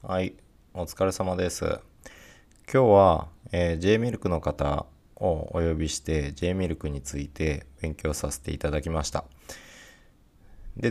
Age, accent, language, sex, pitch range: 20-39, native, Japanese, male, 70-90 Hz